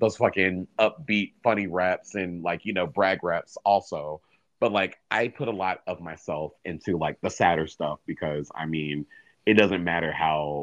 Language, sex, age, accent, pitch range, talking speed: English, male, 30-49, American, 80-95 Hz, 180 wpm